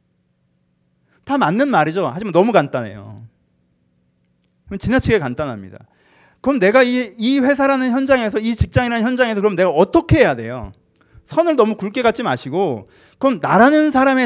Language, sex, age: Korean, male, 30-49